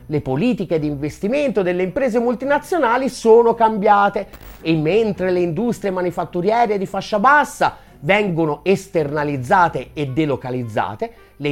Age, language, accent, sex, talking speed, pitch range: 30-49, Italian, native, male, 115 wpm, 155-230 Hz